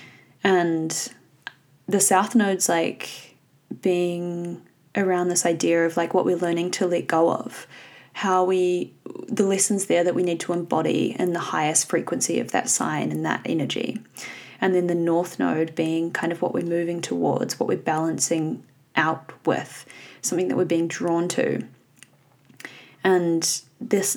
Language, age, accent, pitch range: English, 20-39, Australian, 170-190 Hz